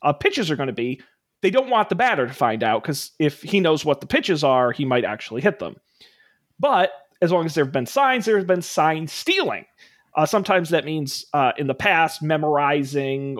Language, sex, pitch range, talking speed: English, male, 140-200 Hz, 215 wpm